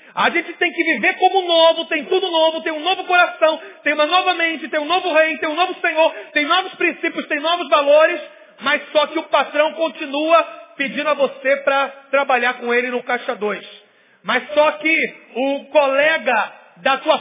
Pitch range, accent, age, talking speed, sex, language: 245-310 Hz, Brazilian, 40-59, 190 wpm, male, Portuguese